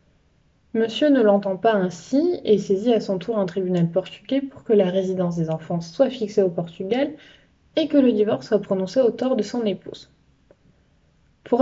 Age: 20-39